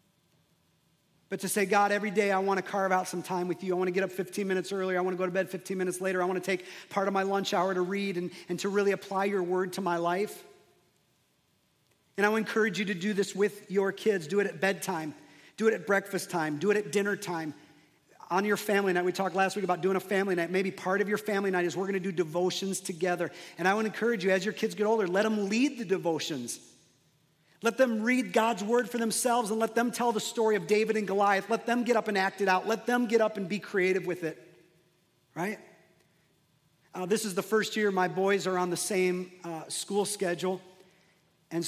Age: 40-59